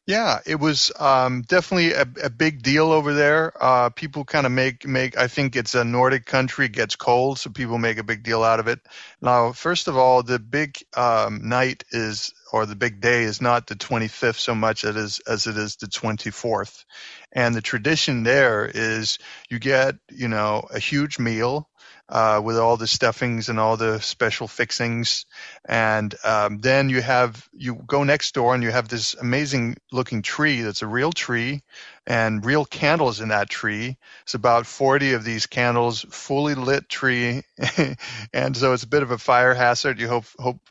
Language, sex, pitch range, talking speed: English, male, 115-130 Hz, 190 wpm